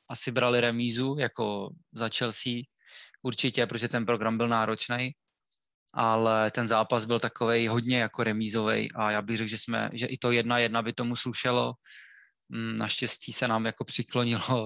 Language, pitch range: Czech, 110-125 Hz